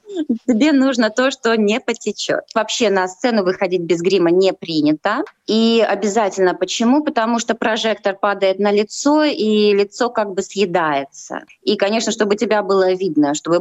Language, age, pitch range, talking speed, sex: Russian, 20-39, 185-235 Hz, 155 wpm, female